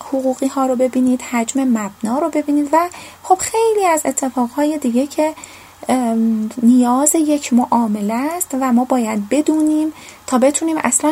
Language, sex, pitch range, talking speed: Persian, female, 235-305 Hz, 140 wpm